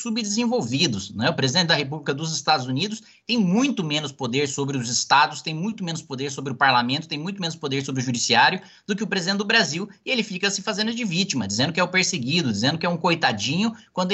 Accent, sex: Brazilian, male